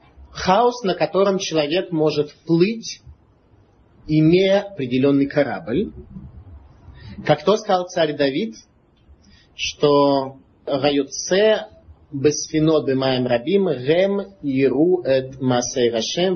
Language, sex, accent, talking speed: Russian, male, native, 90 wpm